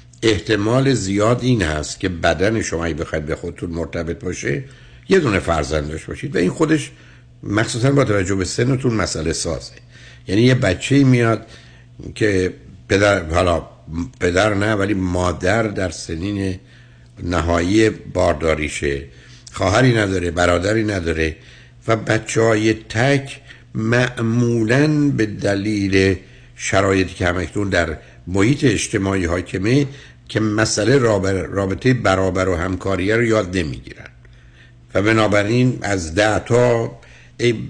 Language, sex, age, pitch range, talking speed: Persian, male, 60-79, 90-120 Hz, 120 wpm